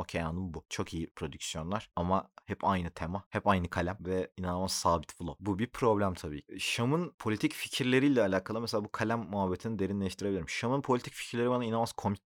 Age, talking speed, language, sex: 30-49, 175 wpm, Turkish, male